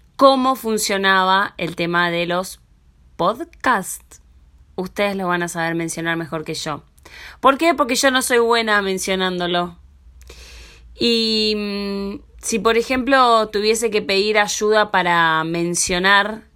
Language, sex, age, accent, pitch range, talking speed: Spanish, female, 20-39, Argentinian, 170-220 Hz, 125 wpm